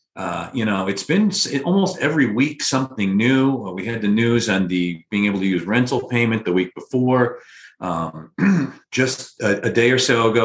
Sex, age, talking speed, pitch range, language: male, 40-59, 190 wpm, 95-120 Hz, English